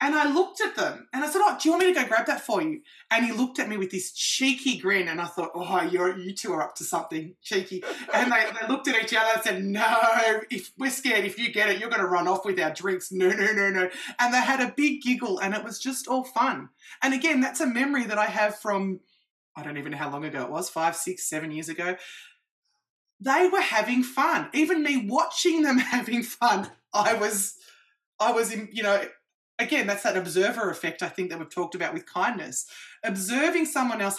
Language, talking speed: English, 240 wpm